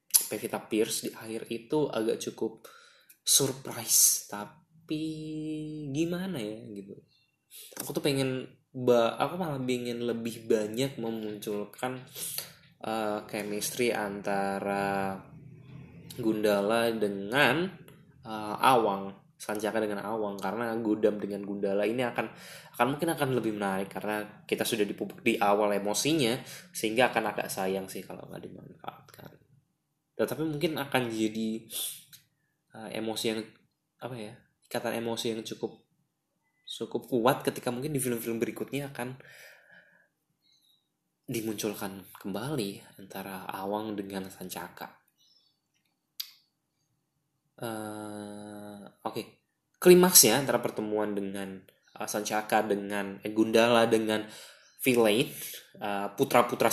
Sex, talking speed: male, 110 wpm